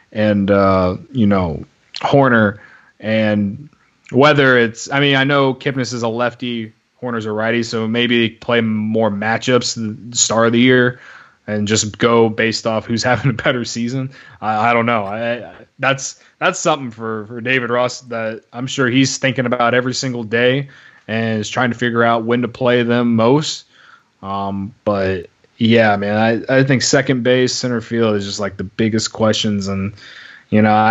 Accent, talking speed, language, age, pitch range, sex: American, 175 wpm, English, 20-39, 110-130 Hz, male